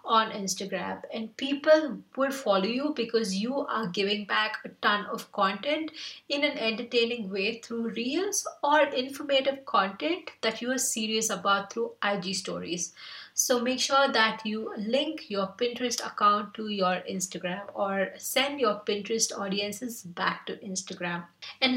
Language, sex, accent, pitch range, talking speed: English, female, Indian, 200-250 Hz, 150 wpm